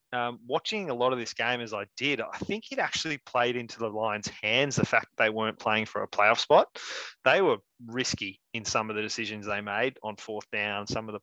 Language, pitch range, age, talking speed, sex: English, 105-120 Hz, 20-39, 240 wpm, male